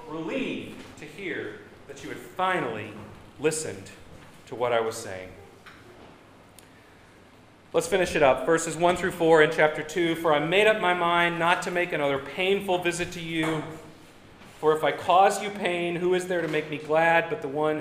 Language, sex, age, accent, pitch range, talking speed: English, male, 40-59, American, 110-160 Hz, 180 wpm